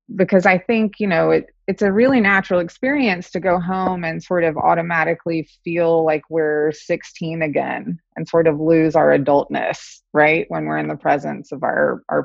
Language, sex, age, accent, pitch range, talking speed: English, female, 30-49, American, 145-175 Hz, 185 wpm